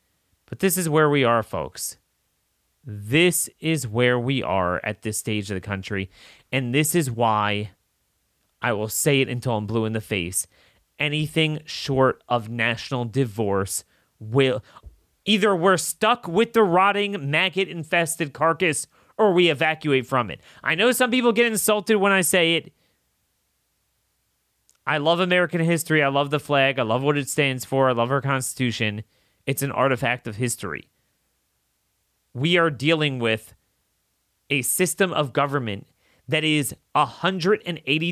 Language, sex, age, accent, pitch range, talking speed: English, male, 30-49, American, 115-165 Hz, 150 wpm